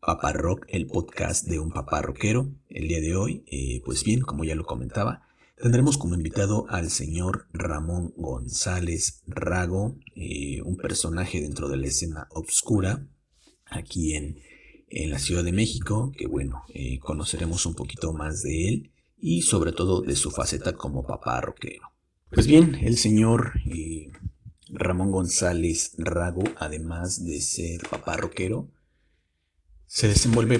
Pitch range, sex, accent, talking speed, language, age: 85-110 Hz, male, Mexican, 145 wpm, Spanish, 50-69